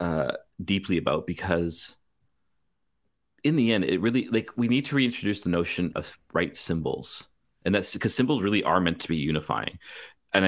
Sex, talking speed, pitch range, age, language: male, 170 wpm, 85-105 Hz, 30-49, English